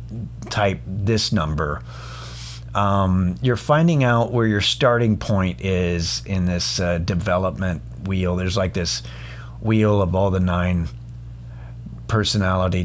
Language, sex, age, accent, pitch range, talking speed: English, male, 40-59, American, 85-115 Hz, 120 wpm